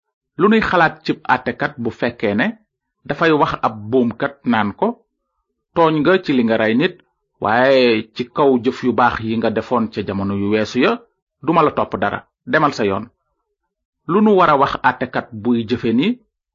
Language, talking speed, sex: French, 125 wpm, male